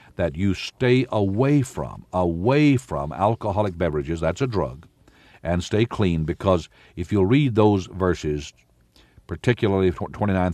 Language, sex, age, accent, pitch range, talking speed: English, male, 60-79, American, 80-115 Hz, 130 wpm